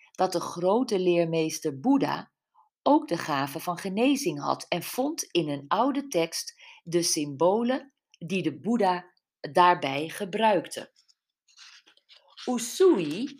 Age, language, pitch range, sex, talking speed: 50-69, Dutch, 155-250 Hz, female, 110 wpm